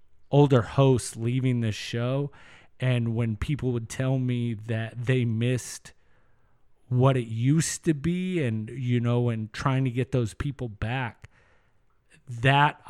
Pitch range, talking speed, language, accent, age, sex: 115-140 Hz, 140 wpm, English, American, 30-49, male